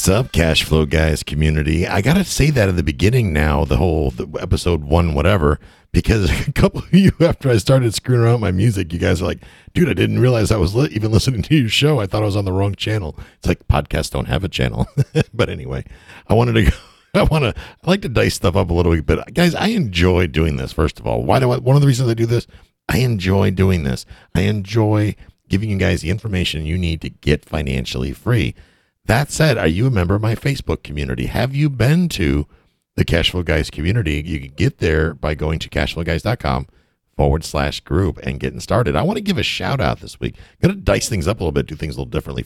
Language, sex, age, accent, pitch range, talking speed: English, male, 50-69, American, 80-110 Hz, 245 wpm